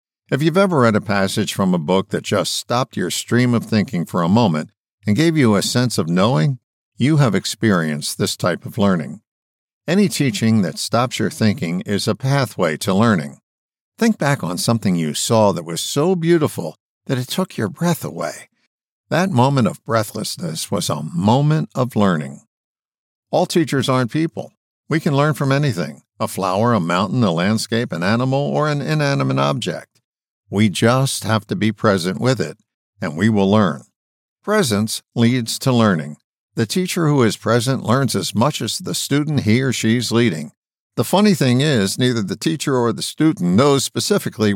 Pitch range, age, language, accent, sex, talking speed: 105-145 Hz, 60-79, English, American, male, 180 wpm